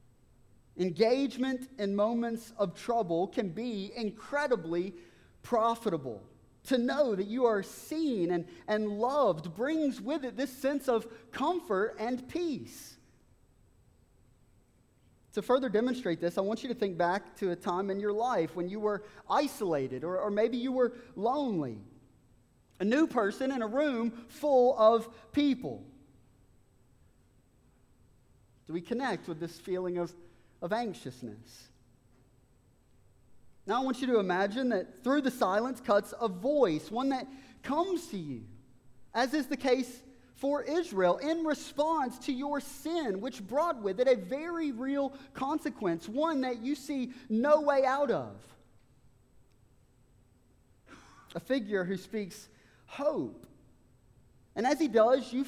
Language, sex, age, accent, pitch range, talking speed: English, male, 30-49, American, 175-265 Hz, 135 wpm